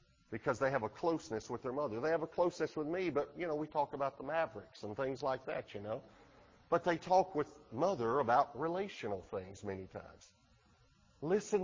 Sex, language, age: male, English, 50-69